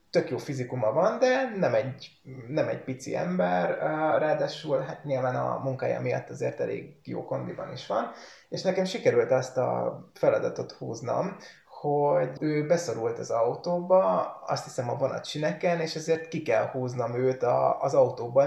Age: 20-39